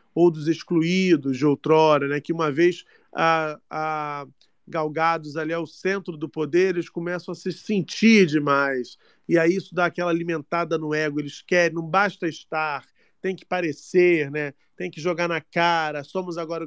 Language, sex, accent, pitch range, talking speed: Portuguese, male, Brazilian, 160-220 Hz, 170 wpm